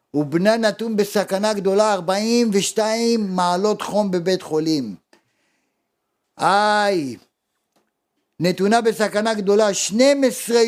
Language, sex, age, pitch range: Hebrew, male, 50-69, 155-205 Hz